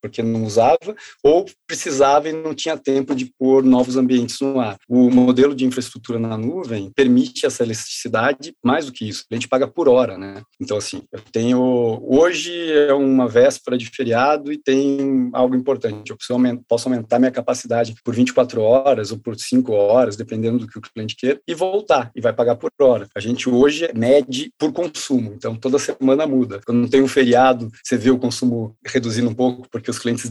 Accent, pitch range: Brazilian, 115-130 Hz